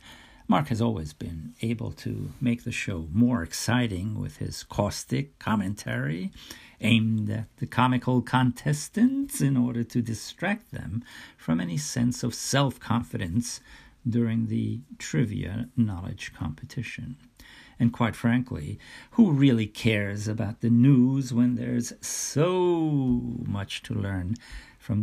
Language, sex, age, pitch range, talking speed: English, male, 50-69, 105-125 Hz, 120 wpm